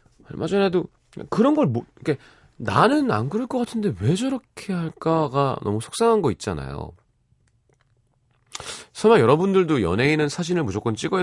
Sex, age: male, 30-49